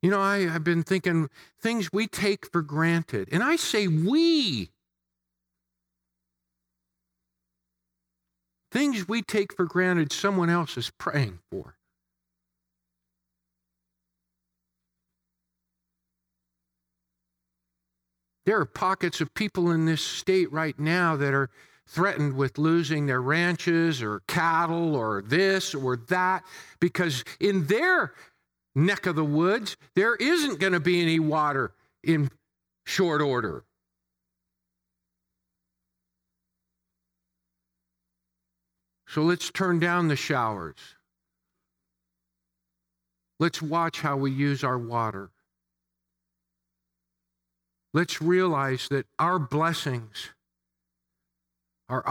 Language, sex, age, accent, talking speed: English, male, 50-69, American, 95 wpm